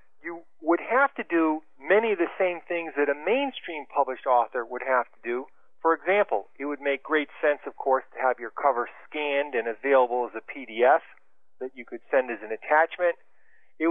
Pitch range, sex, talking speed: 125-170 Hz, male, 200 wpm